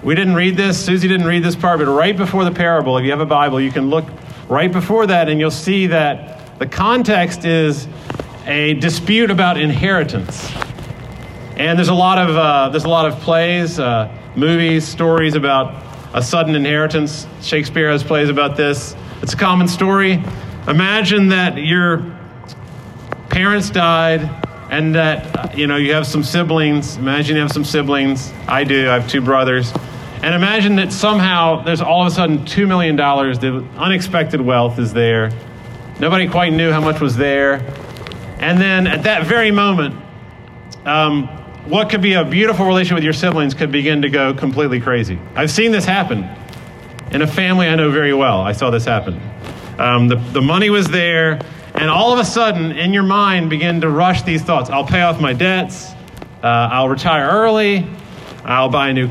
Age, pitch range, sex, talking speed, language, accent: 40-59, 135-175 Hz, male, 185 wpm, English, American